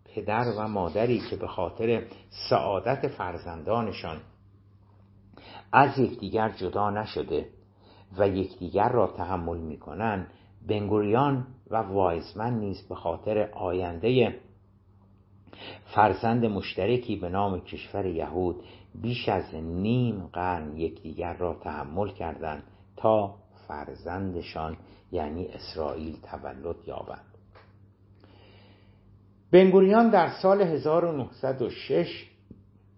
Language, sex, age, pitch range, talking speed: Persian, male, 60-79, 95-115 Hz, 85 wpm